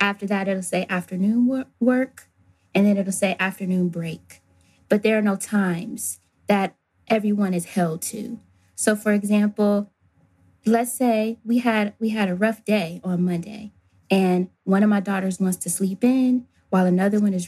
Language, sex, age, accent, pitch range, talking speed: English, female, 20-39, American, 180-220 Hz, 170 wpm